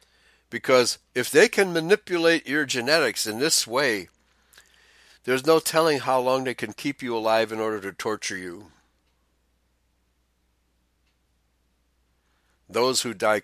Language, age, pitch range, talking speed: English, 60-79, 95-140 Hz, 125 wpm